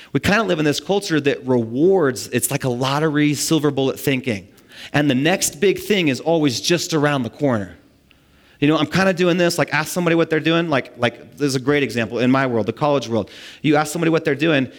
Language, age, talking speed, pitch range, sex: English, 30-49, 240 wpm, 125-165 Hz, male